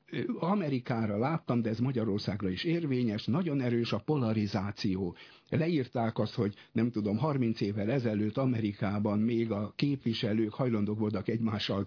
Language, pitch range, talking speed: Hungarian, 105-135 Hz, 130 wpm